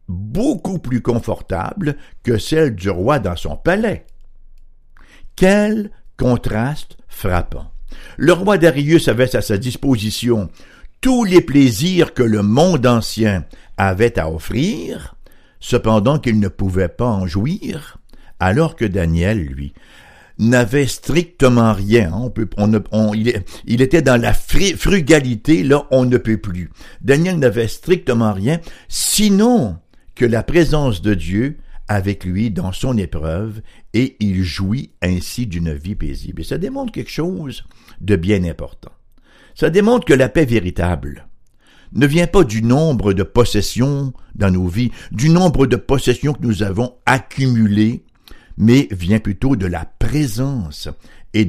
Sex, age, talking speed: male, 60-79, 140 wpm